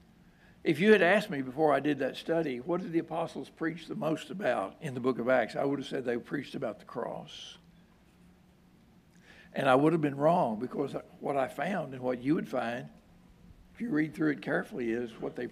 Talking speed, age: 215 wpm, 60-79